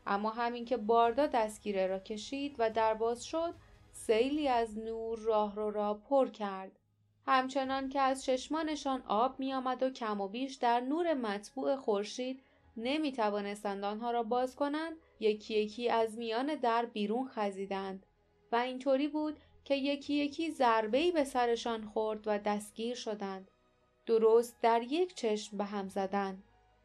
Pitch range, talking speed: 215-275 Hz, 145 wpm